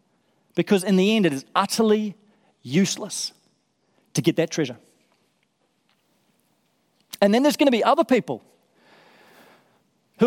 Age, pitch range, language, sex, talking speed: 40-59, 150-200 Hz, English, male, 125 wpm